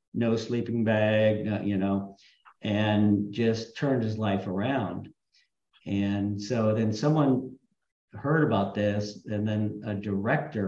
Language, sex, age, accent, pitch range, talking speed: English, male, 50-69, American, 100-120 Hz, 125 wpm